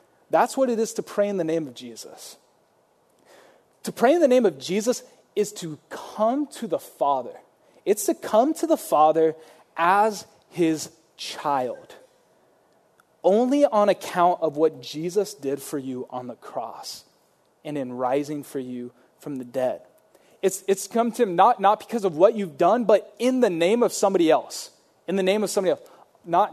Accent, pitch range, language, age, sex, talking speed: American, 150-210 Hz, English, 20-39, male, 180 wpm